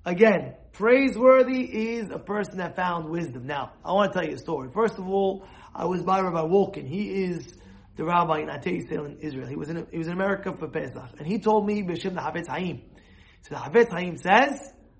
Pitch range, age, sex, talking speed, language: 170-215 Hz, 30-49, male, 210 wpm, English